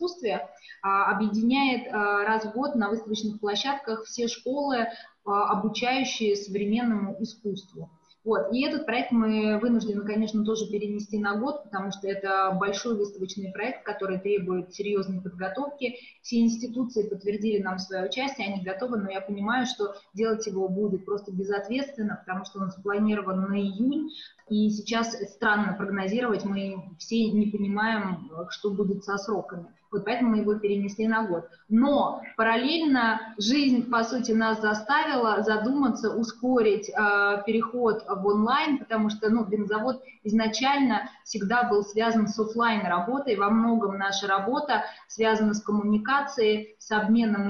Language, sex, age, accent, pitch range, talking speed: Russian, female, 20-39, native, 200-235 Hz, 140 wpm